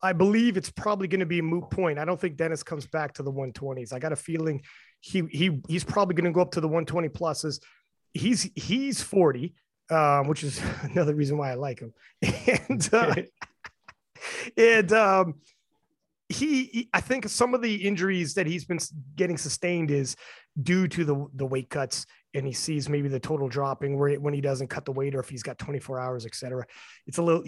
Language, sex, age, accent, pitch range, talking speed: English, male, 30-49, American, 135-180 Hz, 205 wpm